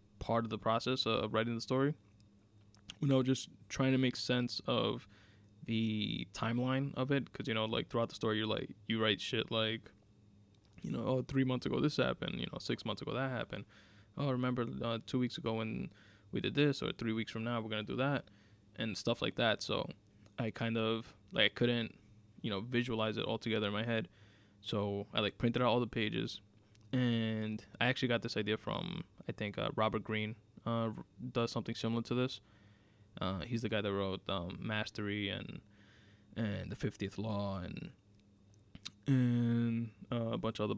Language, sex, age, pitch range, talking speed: English, male, 20-39, 105-115 Hz, 195 wpm